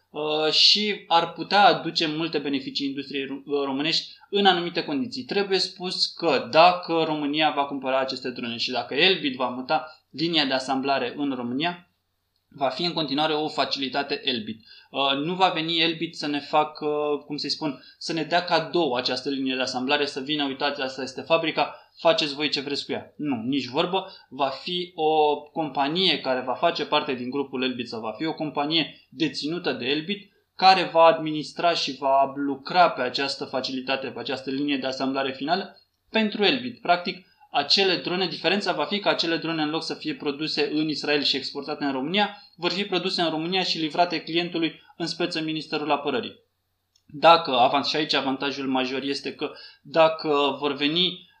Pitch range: 140-170 Hz